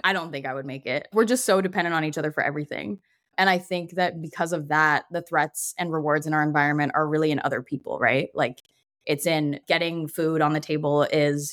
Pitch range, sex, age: 150-175 Hz, female, 20-39